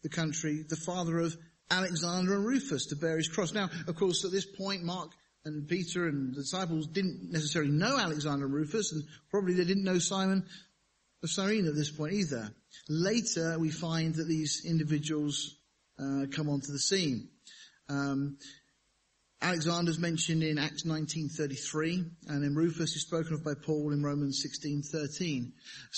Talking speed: 155 wpm